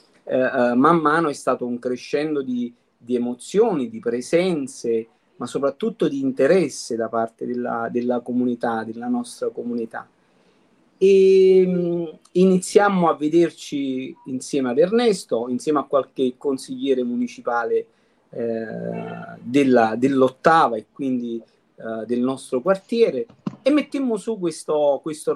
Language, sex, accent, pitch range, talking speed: Italian, male, native, 125-165 Hz, 110 wpm